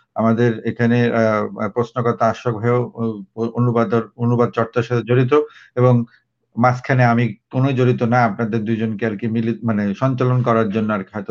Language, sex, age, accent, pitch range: Bengali, male, 50-69, native, 115-135 Hz